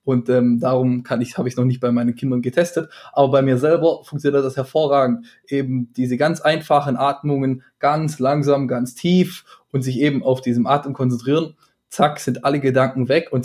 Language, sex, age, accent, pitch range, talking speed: German, male, 20-39, German, 125-150 Hz, 185 wpm